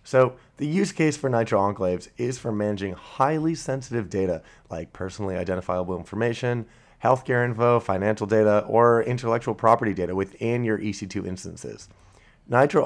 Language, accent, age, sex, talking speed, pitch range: English, American, 30-49, male, 140 wpm, 95-120 Hz